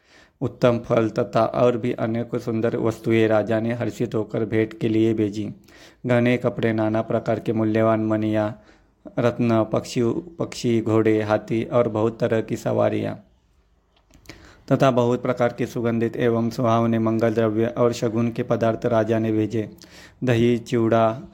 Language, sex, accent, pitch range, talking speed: Hindi, male, native, 110-120 Hz, 145 wpm